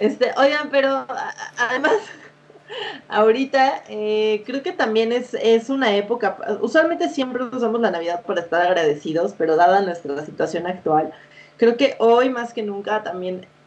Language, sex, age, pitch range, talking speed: Spanish, female, 20-39, 180-220 Hz, 140 wpm